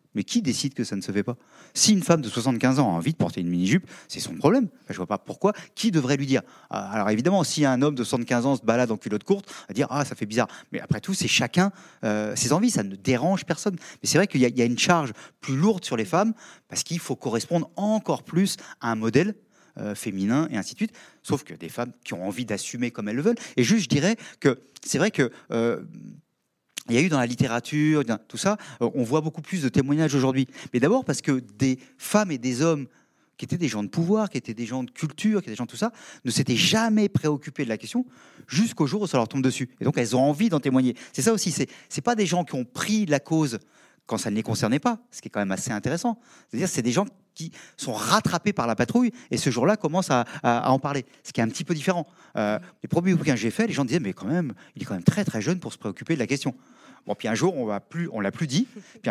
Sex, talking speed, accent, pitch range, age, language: male, 270 wpm, French, 125-185 Hz, 30-49, French